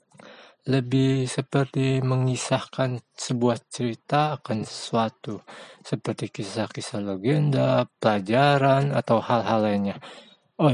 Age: 20-39